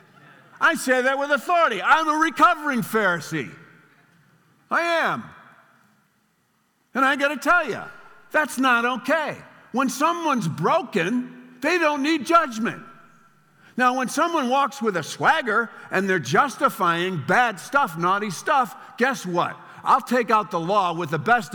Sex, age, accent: male, 50-69, American